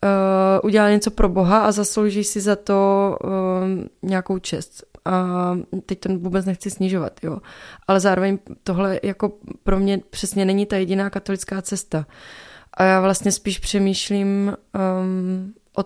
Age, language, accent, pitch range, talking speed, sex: 20-39, Czech, native, 185-200 Hz, 150 wpm, female